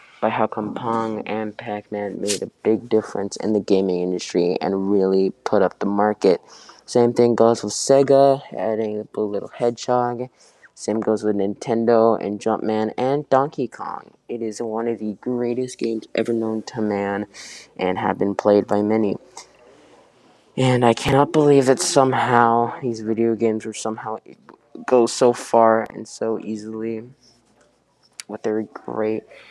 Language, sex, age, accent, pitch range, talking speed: English, male, 20-39, American, 100-115 Hz, 155 wpm